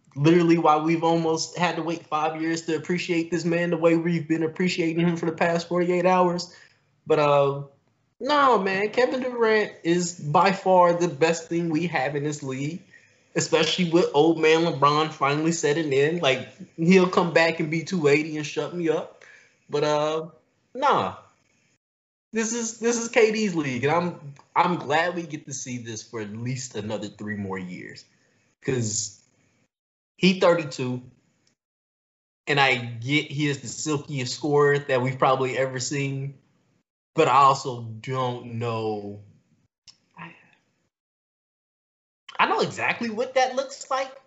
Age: 20-39